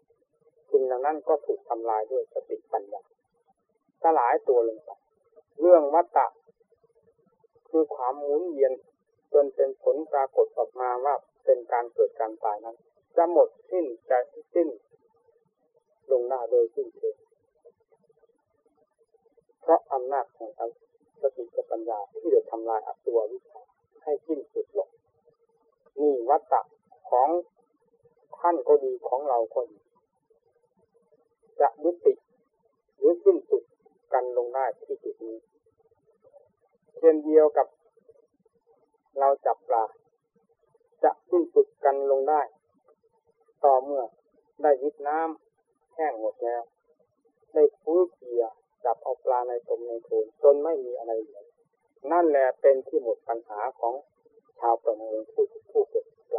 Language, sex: Thai, male